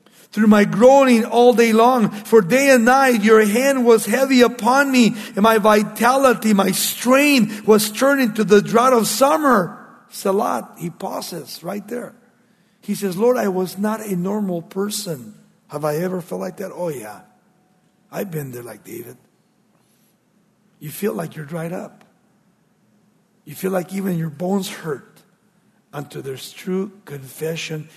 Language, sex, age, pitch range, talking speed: English, male, 50-69, 170-220 Hz, 155 wpm